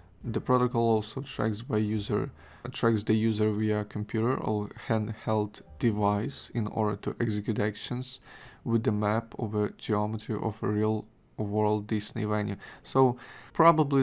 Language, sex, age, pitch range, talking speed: English, male, 20-39, 105-115 Hz, 140 wpm